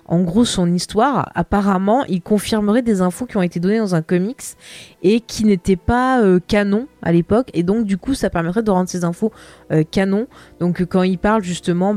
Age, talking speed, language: 20-39, 210 wpm, French